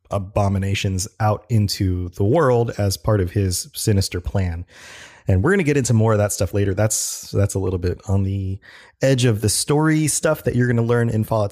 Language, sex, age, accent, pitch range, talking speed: English, male, 30-49, American, 100-120 Hz, 215 wpm